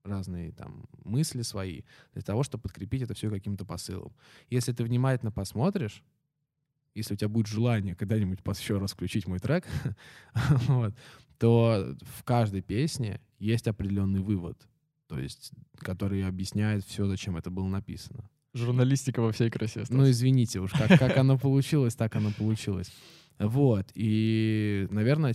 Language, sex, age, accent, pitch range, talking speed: Russian, male, 20-39, native, 100-125 Hz, 135 wpm